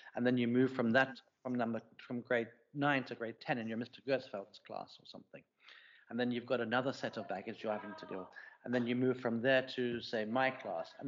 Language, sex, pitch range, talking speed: English, male, 115-130 Hz, 240 wpm